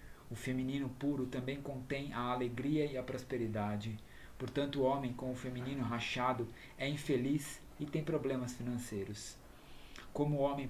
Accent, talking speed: Brazilian, 145 wpm